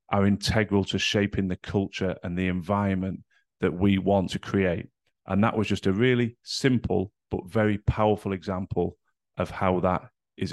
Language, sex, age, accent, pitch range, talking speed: English, male, 30-49, British, 95-110 Hz, 165 wpm